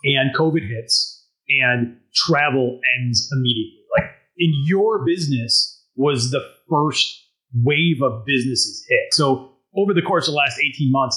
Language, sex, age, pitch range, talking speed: English, male, 30-49, 125-170 Hz, 150 wpm